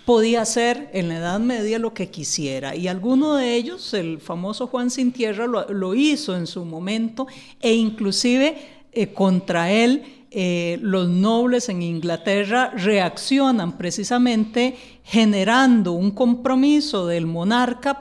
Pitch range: 185-250 Hz